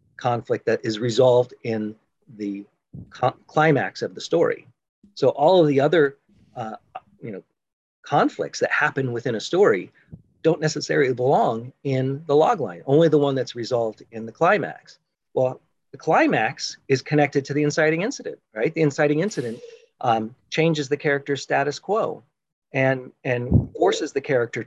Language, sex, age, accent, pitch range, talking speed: English, male, 40-59, American, 120-155 Hz, 155 wpm